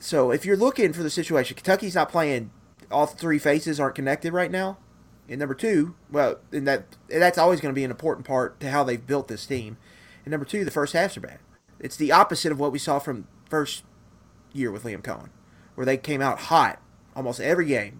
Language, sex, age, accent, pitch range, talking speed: English, male, 30-49, American, 130-165 Hz, 225 wpm